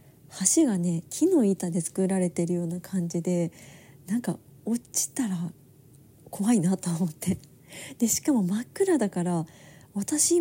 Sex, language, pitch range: female, Japanese, 175-225 Hz